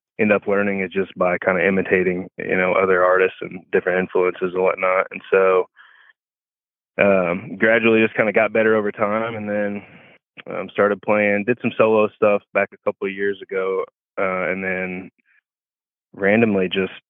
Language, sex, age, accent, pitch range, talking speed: English, male, 20-39, American, 90-105 Hz, 170 wpm